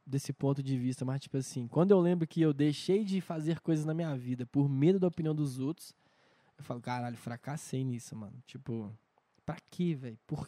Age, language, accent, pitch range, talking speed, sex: 10-29, Portuguese, Brazilian, 130-170 Hz, 205 wpm, male